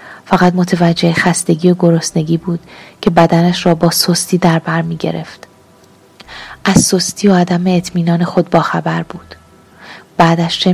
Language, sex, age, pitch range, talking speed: Persian, female, 30-49, 170-185 Hz, 140 wpm